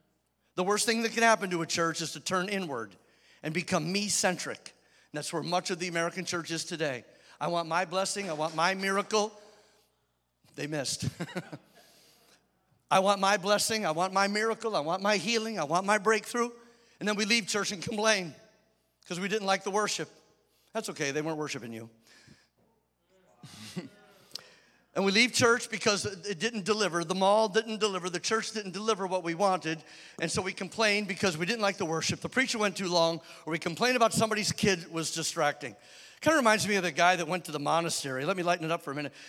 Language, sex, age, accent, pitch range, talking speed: English, male, 50-69, American, 170-215 Hz, 200 wpm